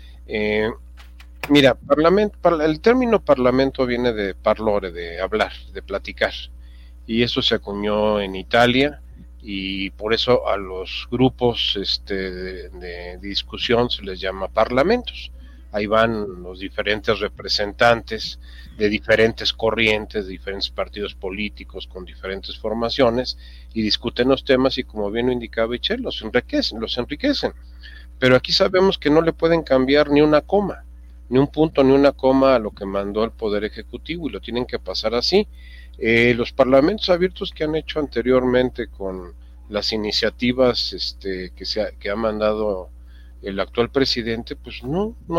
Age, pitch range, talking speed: 40-59, 95-135 Hz, 150 wpm